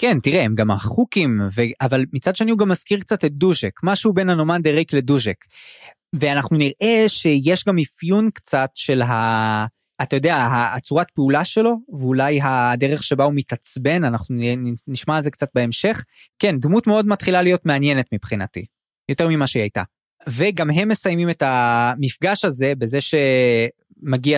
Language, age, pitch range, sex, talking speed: Hebrew, 20-39, 125-170 Hz, male, 155 wpm